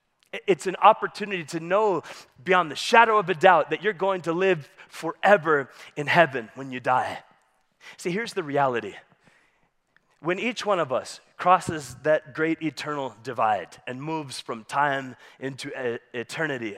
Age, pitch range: 30-49, 145-185 Hz